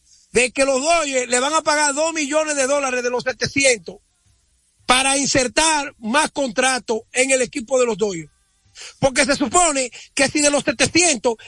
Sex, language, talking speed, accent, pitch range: male, Spanish, 170 wpm, American, 265-325 Hz